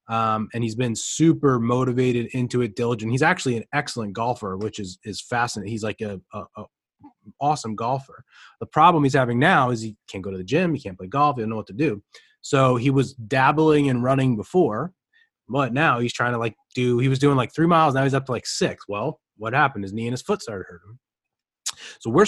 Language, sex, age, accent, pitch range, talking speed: English, male, 20-39, American, 115-140 Hz, 235 wpm